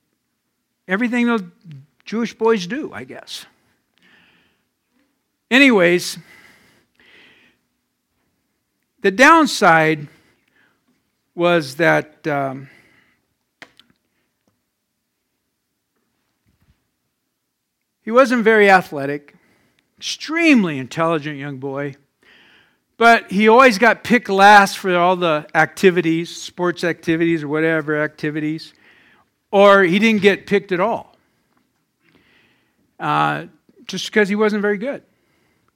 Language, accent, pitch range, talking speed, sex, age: English, American, 170-220 Hz, 85 wpm, male, 60-79